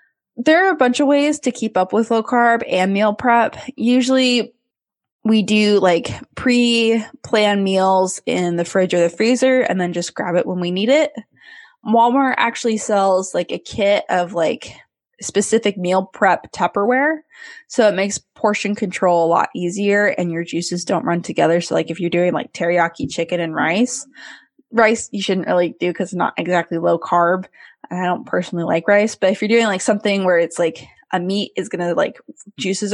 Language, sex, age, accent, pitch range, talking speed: English, female, 20-39, American, 180-245 Hz, 190 wpm